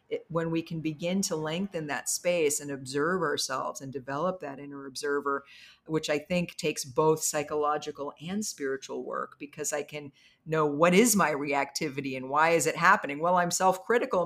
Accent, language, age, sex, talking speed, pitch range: American, English, 50-69, female, 175 wpm, 145-180 Hz